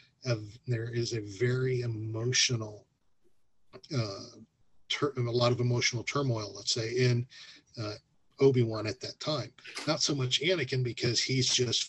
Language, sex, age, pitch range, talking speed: English, male, 40-59, 115-130 Hz, 145 wpm